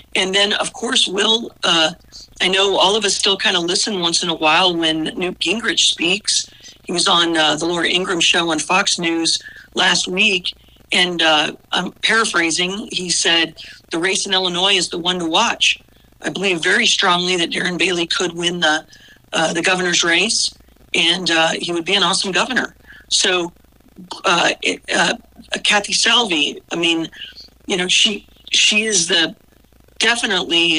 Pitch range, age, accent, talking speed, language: 165-195 Hz, 50-69, American, 175 wpm, English